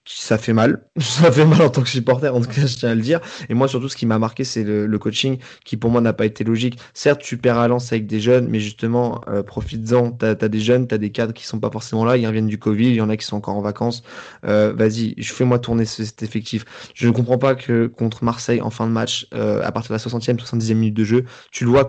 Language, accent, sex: French, French, male